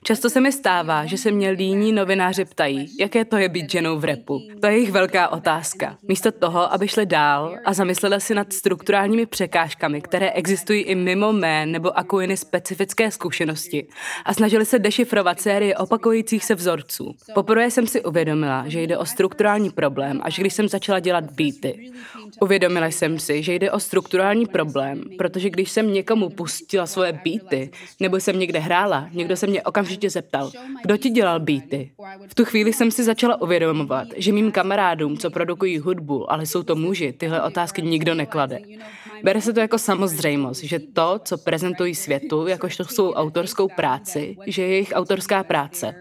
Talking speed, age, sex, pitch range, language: 175 wpm, 20-39, female, 165-200 Hz, Czech